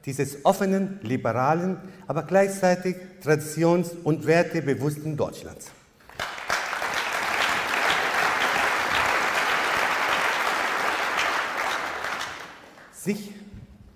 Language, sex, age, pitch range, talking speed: German, male, 50-69, 135-175 Hz, 45 wpm